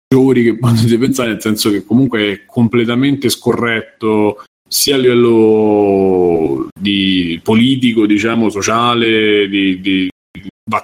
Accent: native